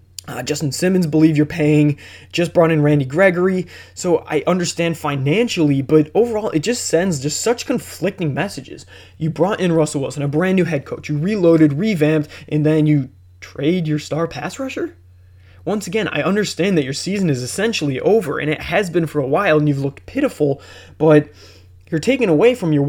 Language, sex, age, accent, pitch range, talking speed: English, male, 20-39, American, 145-170 Hz, 190 wpm